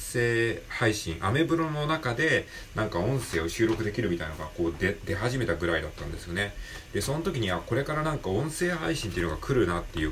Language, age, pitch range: Japanese, 40-59, 85-115 Hz